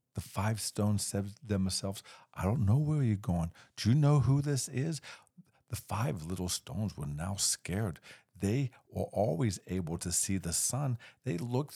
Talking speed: 180 wpm